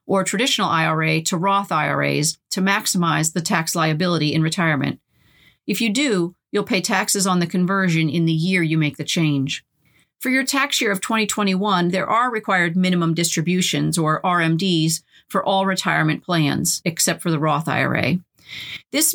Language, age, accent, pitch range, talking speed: English, 40-59, American, 165-205 Hz, 165 wpm